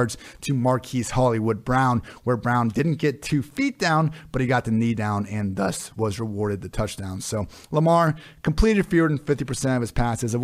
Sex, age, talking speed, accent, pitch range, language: male, 30-49, 190 wpm, American, 110-130 Hz, English